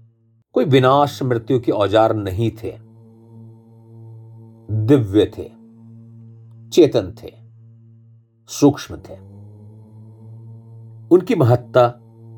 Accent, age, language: native, 40-59, Hindi